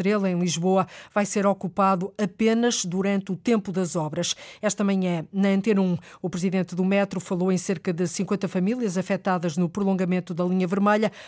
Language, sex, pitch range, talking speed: Portuguese, female, 185-210 Hz, 175 wpm